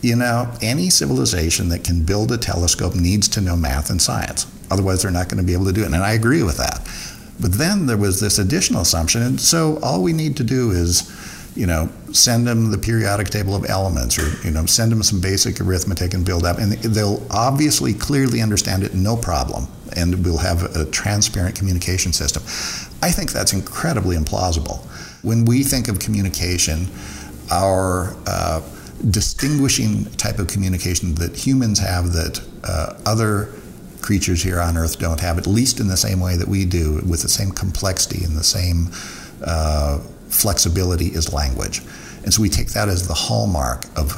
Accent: American